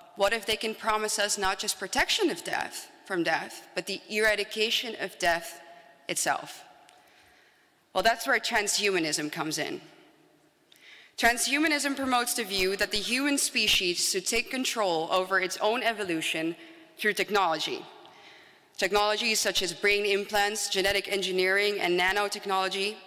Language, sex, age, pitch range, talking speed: English, female, 30-49, 185-240 Hz, 135 wpm